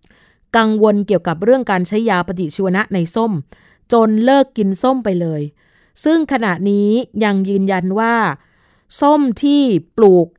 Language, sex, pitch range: Thai, female, 180-225 Hz